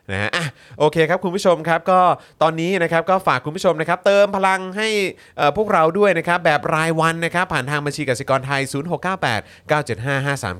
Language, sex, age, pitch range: Thai, male, 30-49, 120-160 Hz